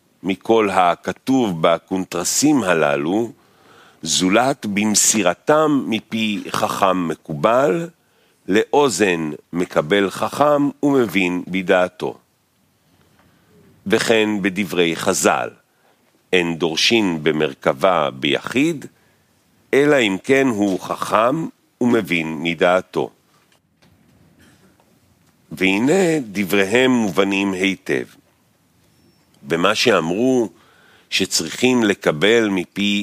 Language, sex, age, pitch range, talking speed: Hebrew, male, 50-69, 85-115 Hz, 65 wpm